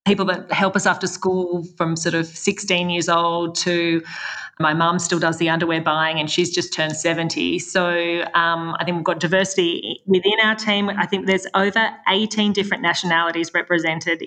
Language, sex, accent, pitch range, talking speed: English, female, Australian, 170-195 Hz, 180 wpm